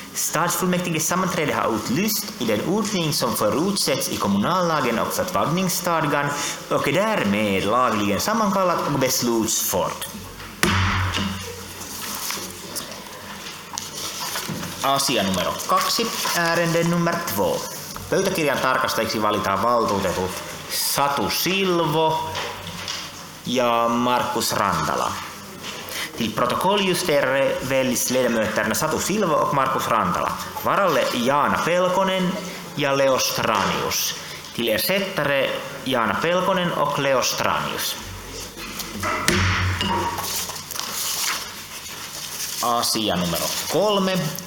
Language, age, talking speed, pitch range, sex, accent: Finnish, 30-49, 75 wpm, 110-175 Hz, male, native